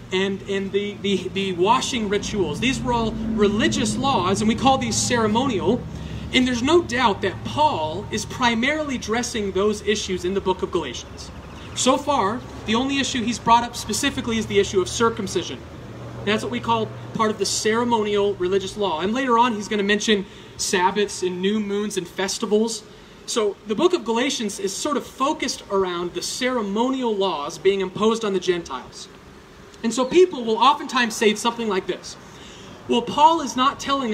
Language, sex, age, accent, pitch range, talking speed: English, male, 30-49, American, 195-250 Hz, 180 wpm